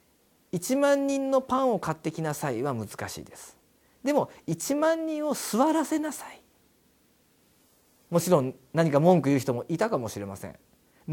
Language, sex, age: Japanese, male, 40-59